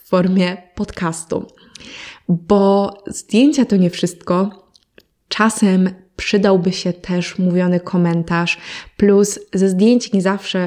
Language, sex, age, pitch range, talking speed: Polish, female, 20-39, 175-200 Hz, 105 wpm